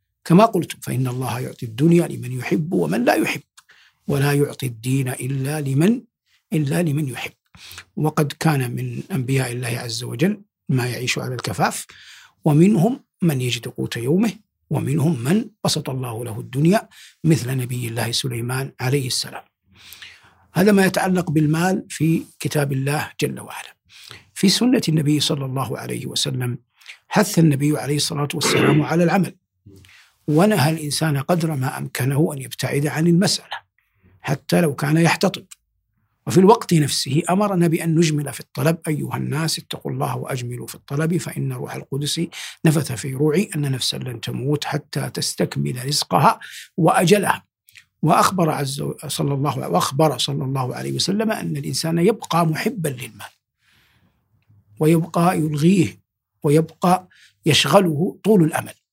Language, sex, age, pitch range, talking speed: Arabic, male, 60-79, 130-165 Hz, 135 wpm